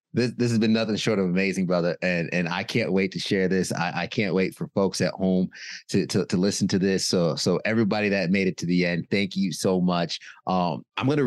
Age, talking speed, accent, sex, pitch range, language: 30-49, 255 wpm, American, male, 90-115 Hz, English